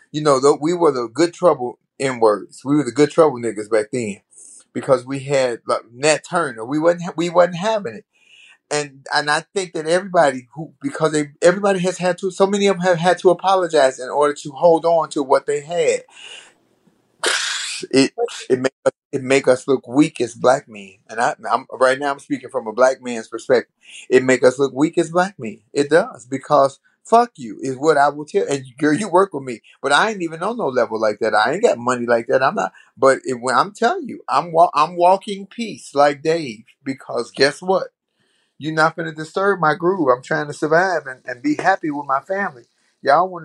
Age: 30-49